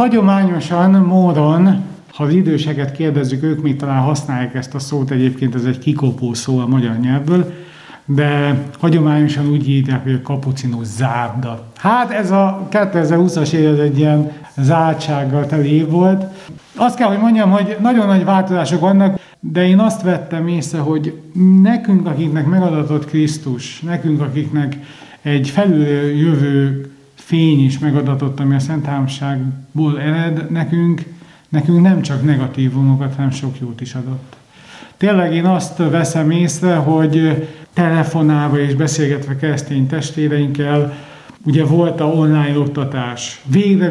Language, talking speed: Hungarian, 130 wpm